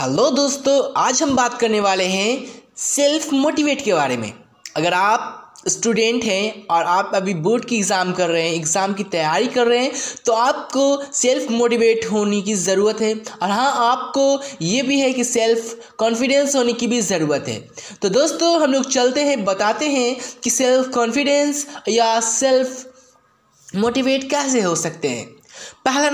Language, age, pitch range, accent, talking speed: Hindi, 20-39, 210-265 Hz, native, 170 wpm